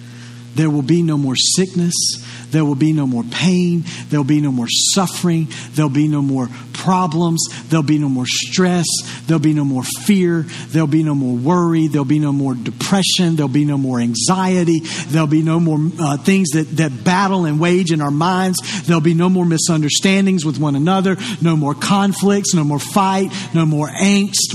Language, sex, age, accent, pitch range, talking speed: English, male, 50-69, American, 140-185 Hz, 210 wpm